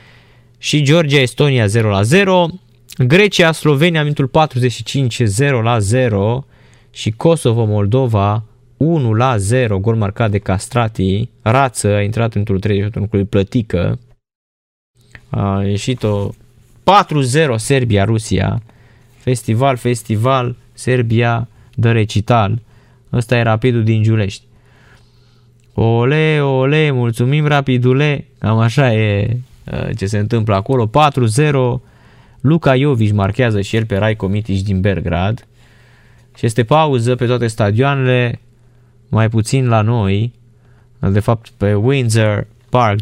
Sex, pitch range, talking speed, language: male, 105-125 Hz, 115 wpm, Romanian